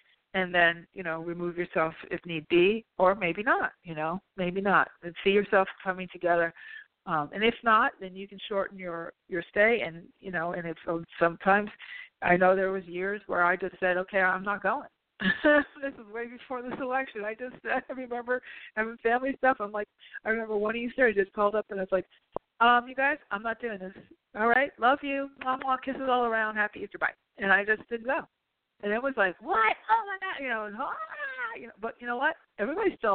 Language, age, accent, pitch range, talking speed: English, 50-69, American, 185-250 Hz, 220 wpm